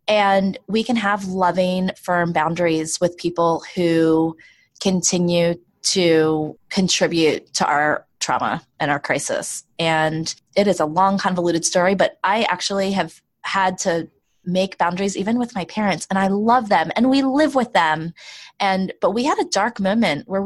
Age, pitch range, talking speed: 20-39, 170-210 Hz, 160 wpm